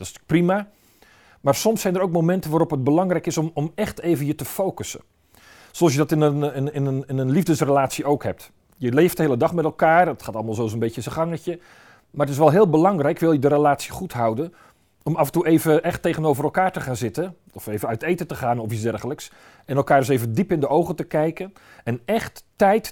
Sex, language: male, Dutch